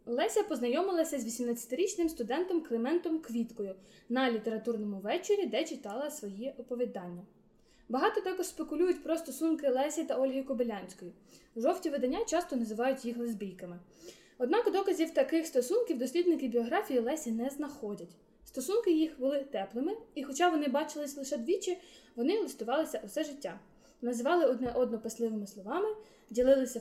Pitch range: 240-305 Hz